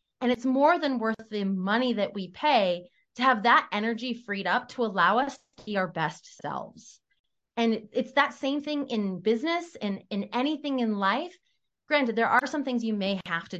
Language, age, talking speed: English, 20-39, 200 wpm